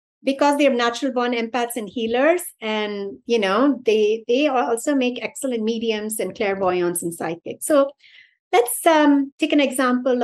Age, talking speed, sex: 60-79, 150 wpm, female